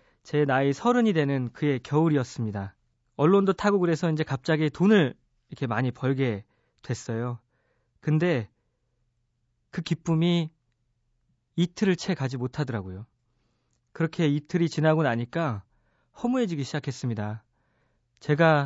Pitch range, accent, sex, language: 120-170 Hz, native, male, Korean